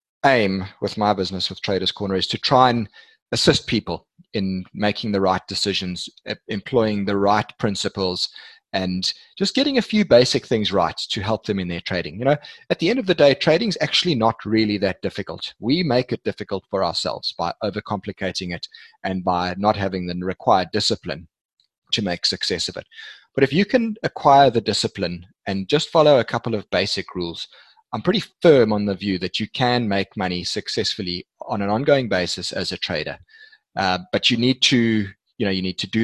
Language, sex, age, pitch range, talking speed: English, male, 30-49, 95-120 Hz, 195 wpm